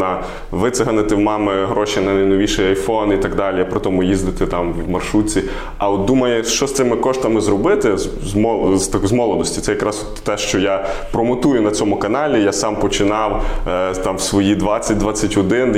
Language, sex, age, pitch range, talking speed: Ukrainian, male, 20-39, 100-120 Hz, 165 wpm